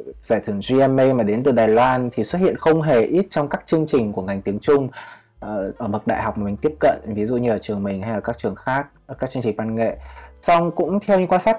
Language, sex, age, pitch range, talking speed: Vietnamese, male, 20-39, 110-150 Hz, 270 wpm